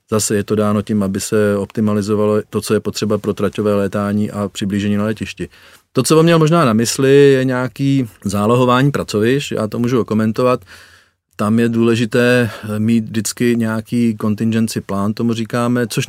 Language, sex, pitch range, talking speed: Czech, male, 105-120 Hz, 170 wpm